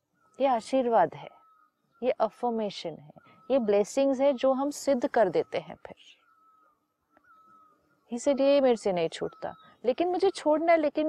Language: Hindi